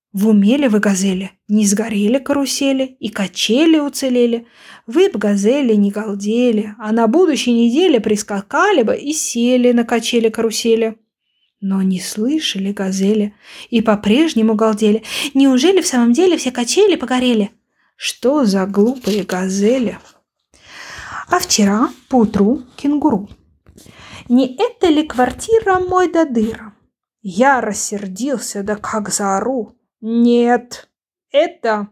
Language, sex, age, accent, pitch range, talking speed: Ukrainian, female, 20-39, native, 215-275 Hz, 115 wpm